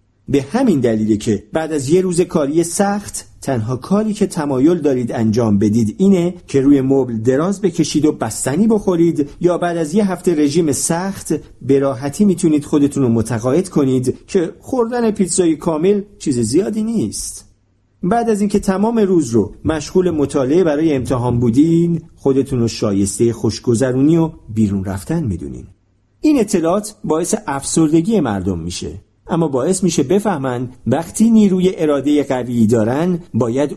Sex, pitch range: male, 120-185 Hz